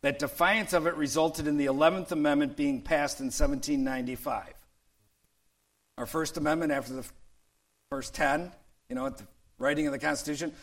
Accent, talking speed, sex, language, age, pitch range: American, 160 wpm, male, English, 50-69, 130-170 Hz